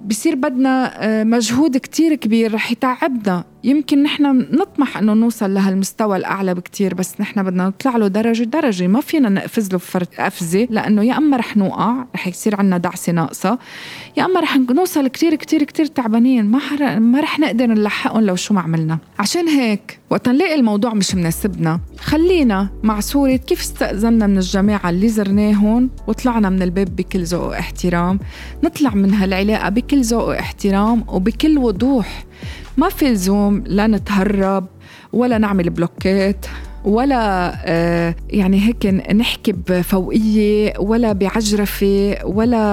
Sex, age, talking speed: female, 20-39, 140 wpm